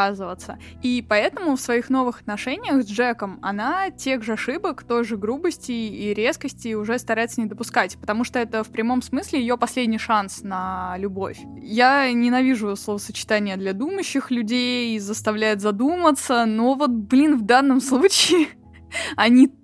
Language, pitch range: Russian, 210-260 Hz